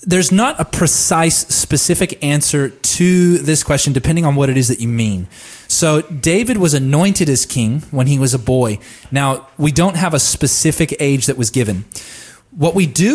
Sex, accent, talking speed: male, American, 185 wpm